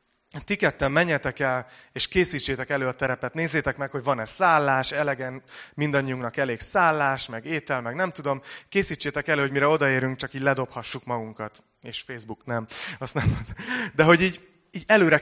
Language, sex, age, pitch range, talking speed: Hungarian, male, 30-49, 120-155 Hz, 160 wpm